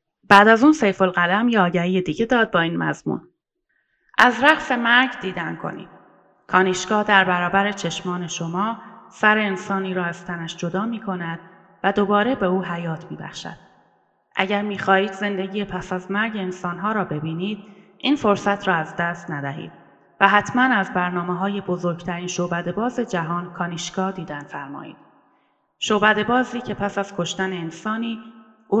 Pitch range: 175-215 Hz